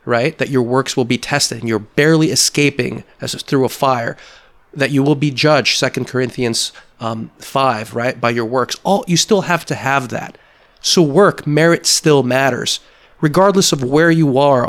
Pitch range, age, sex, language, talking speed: 125-150 Hz, 30-49, male, English, 185 wpm